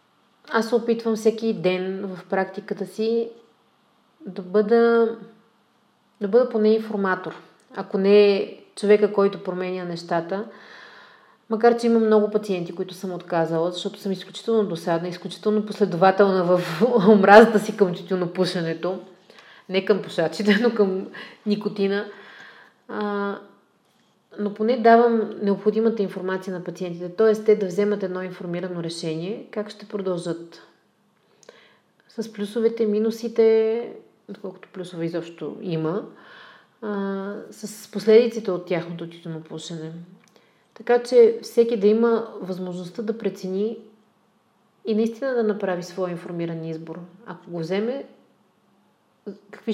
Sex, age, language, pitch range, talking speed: female, 30-49, Bulgarian, 185-220 Hz, 115 wpm